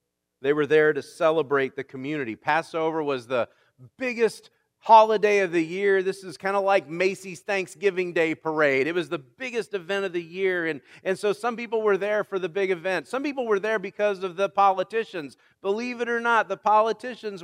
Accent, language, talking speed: American, English, 195 wpm